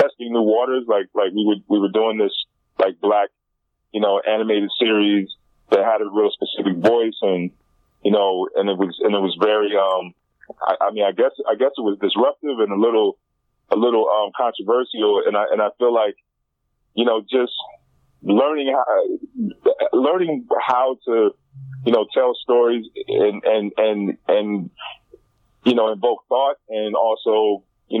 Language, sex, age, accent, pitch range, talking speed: English, male, 30-49, American, 105-130 Hz, 170 wpm